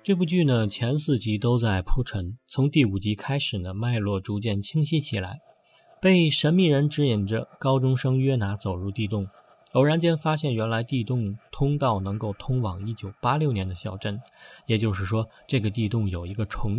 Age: 20-39